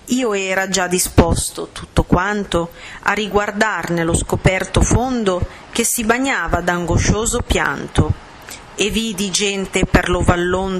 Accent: native